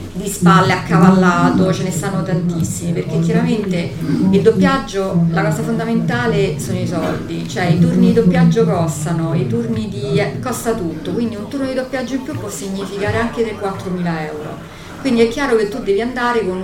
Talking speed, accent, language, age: 175 wpm, native, Italian, 40-59